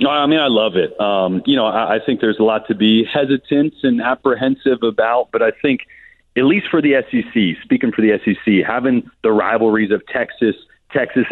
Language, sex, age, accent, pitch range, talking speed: English, male, 40-59, American, 105-135 Hz, 200 wpm